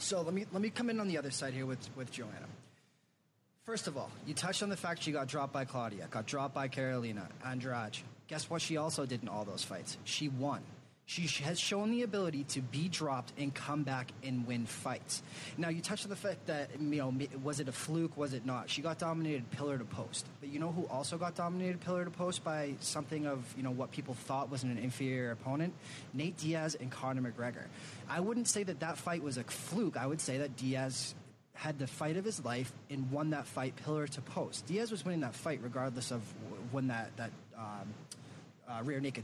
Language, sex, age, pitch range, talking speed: English, male, 20-39, 130-160 Hz, 225 wpm